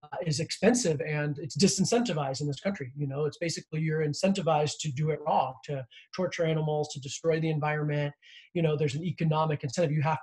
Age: 20-39